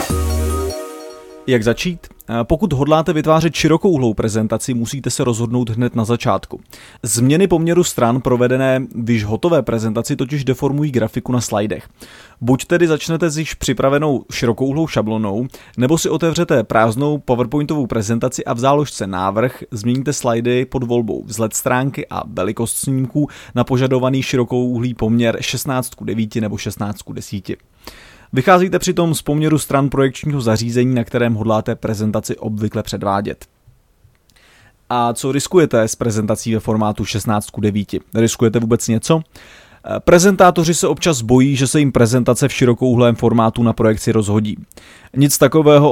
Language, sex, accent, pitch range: Czech, male, native, 110-140 Hz